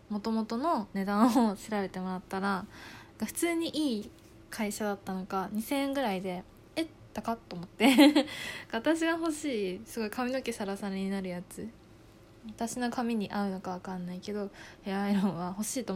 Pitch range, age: 170-230 Hz, 20-39